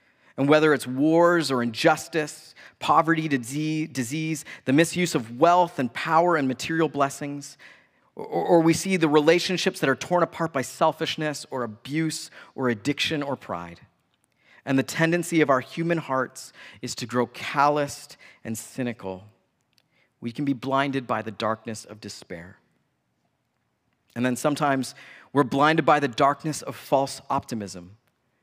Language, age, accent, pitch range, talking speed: English, 40-59, American, 130-160 Hz, 140 wpm